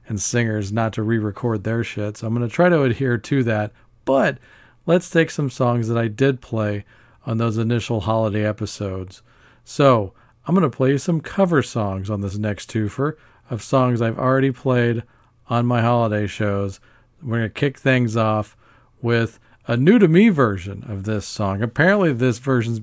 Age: 40-59